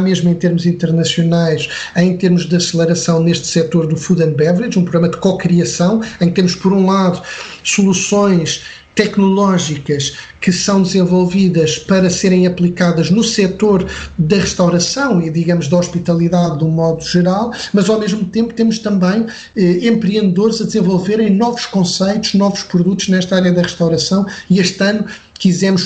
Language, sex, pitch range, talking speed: Portuguese, male, 175-195 Hz, 150 wpm